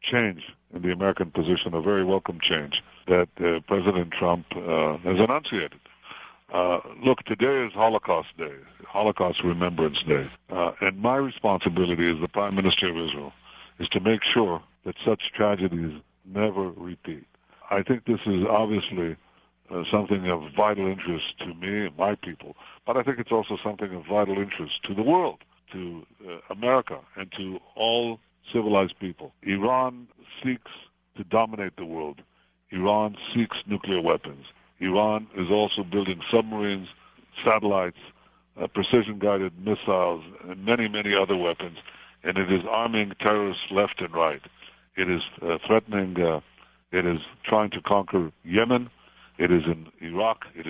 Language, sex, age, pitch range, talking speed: English, male, 60-79, 90-105 Hz, 150 wpm